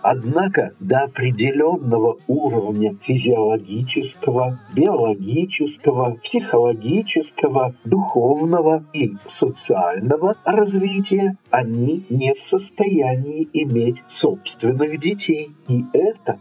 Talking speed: 75 wpm